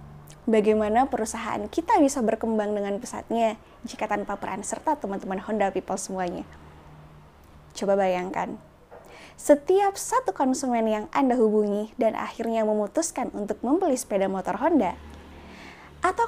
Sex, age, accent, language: female, 20-39, native, Indonesian